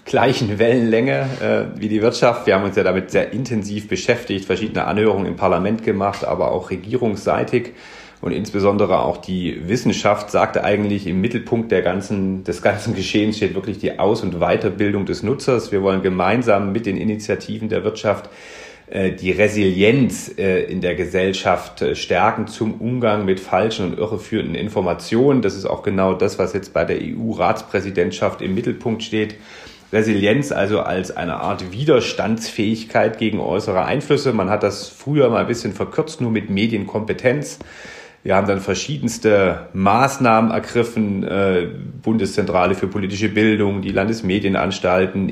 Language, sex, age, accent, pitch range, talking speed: German, male, 40-59, German, 95-110 Hz, 150 wpm